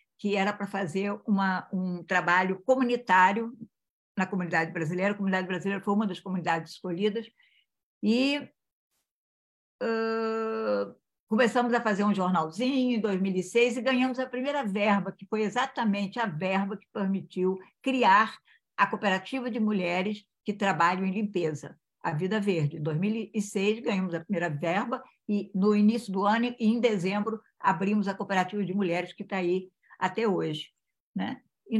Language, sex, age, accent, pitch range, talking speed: English, female, 60-79, Brazilian, 185-225 Hz, 140 wpm